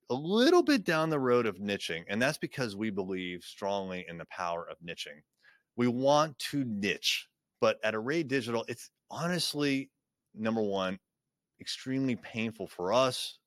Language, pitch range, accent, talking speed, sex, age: English, 90-115 Hz, American, 155 wpm, male, 30-49